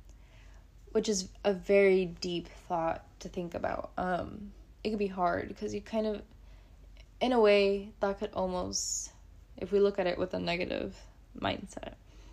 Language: English